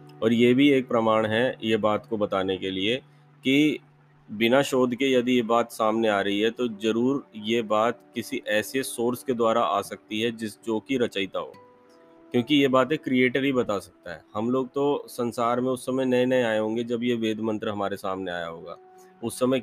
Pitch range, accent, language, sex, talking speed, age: 105-125 Hz, native, Hindi, male, 210 wpm, 30-49